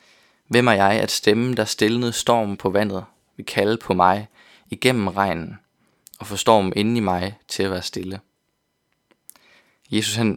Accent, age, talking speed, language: native, 20-39, 160 wpm, Danish